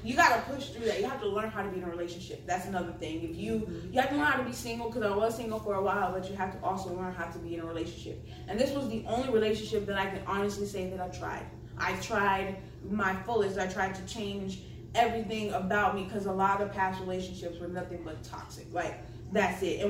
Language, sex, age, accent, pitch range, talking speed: English, female, 20-39, American, 185-240 Hz, 260 wpm